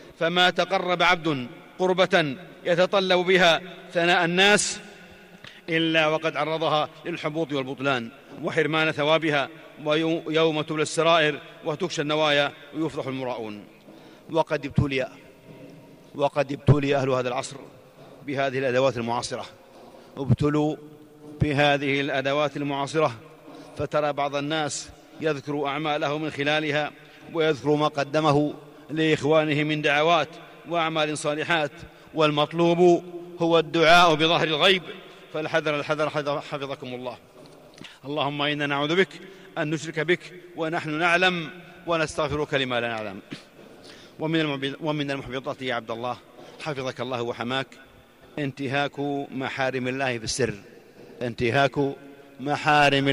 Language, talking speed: Arabic, 100 wpm